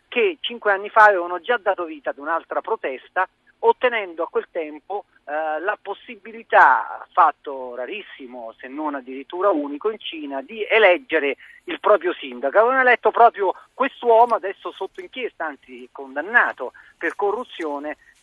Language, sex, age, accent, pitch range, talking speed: Italian, male, 40-59, native, 155-220 Hz, 140 wpm